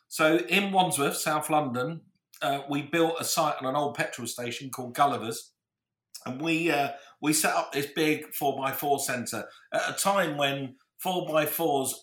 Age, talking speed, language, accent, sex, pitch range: 50-69, 160 wpm, English, British, male, 125-160 Hz